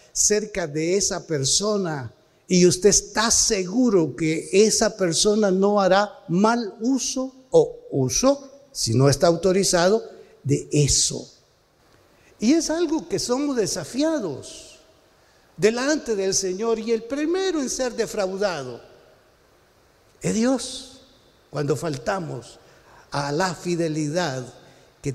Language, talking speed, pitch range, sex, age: Spanish, 110 wpm, 160-240 Hz, male, 60-79